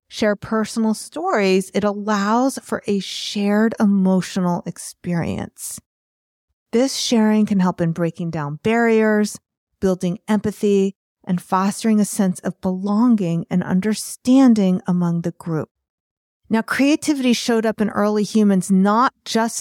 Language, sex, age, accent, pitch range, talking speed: English, female, 40-59, American, 190-235 Hz, 120 wpm